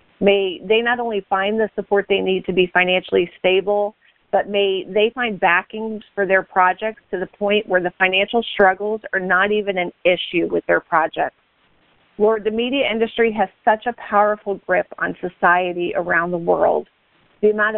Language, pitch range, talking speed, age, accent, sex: English, 180-210 Hz, 175 wpm, 40-59, American, female